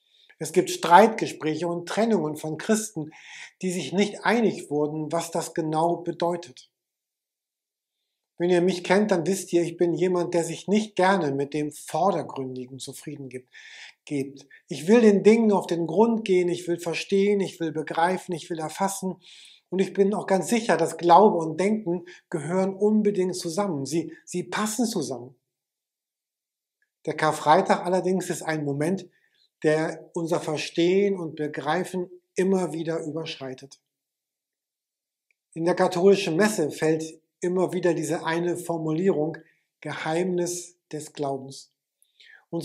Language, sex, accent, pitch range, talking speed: German, male, German, 155-185 Hz, 135 wpm